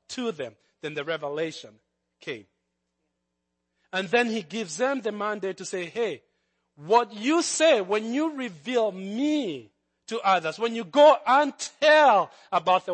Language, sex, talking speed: English, male, 150 wpm